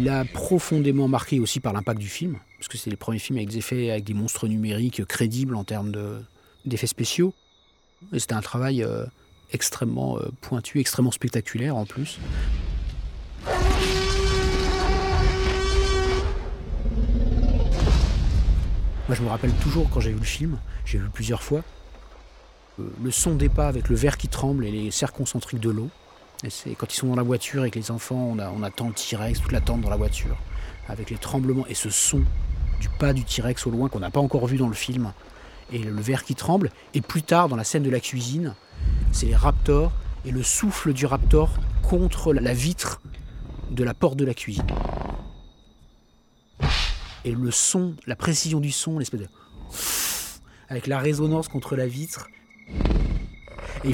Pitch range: 100-135 Hz